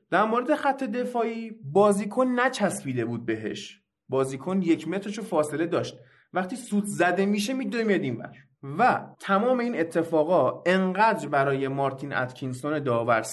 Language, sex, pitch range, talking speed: Persian, male, 140-205 Hz, 130 wpm